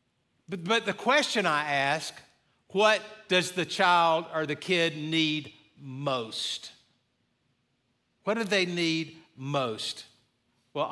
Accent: American